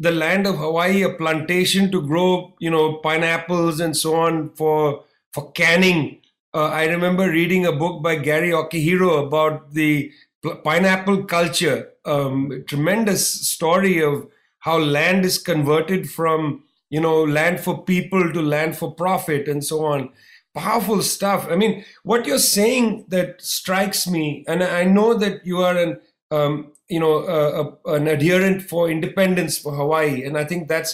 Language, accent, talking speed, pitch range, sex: English, Indian, 160 wpm, 160-200 Hz, male